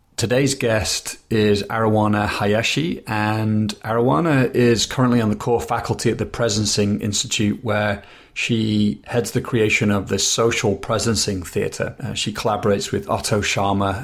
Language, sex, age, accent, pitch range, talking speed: English, male, 30-49, British, 105-115 Hz, 135 wpm